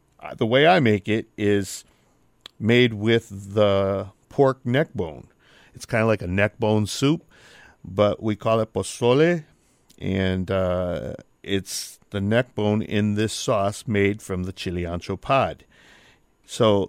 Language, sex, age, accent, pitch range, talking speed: English, male, 50-69, American, 100-120 Hz, 145 wpm